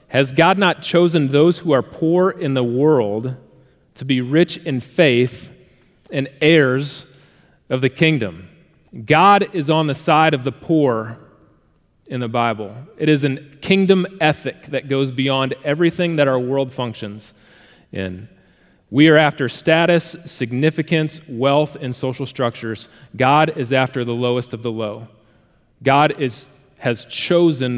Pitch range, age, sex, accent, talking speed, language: 130-165 Hz, 30-49, male, American, 145 wpm, English